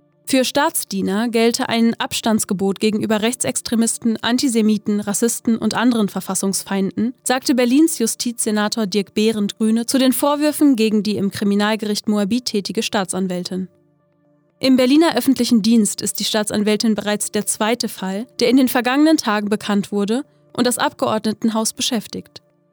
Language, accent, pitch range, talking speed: German, German, 200-245 Hz, 130 wpm